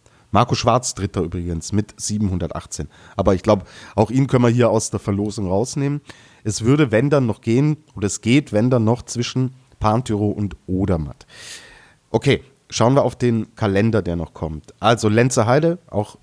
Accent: German